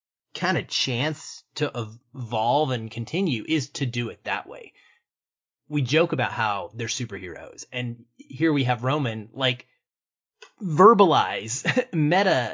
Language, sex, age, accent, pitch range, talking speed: English, male, 30-49, American, 120-155 Hz, 130 wpm